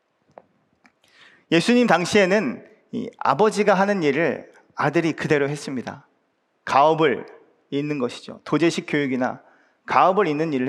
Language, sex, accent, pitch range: Korean, male, native, 150-210 Hz